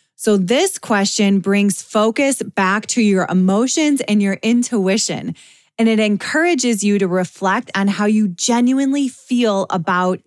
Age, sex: 20-39, female